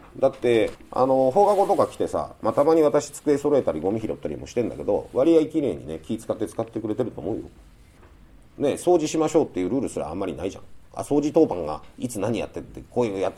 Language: Japanese